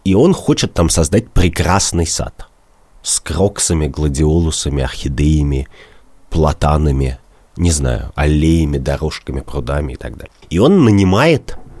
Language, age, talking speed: Russian, 30-49, 115 wpm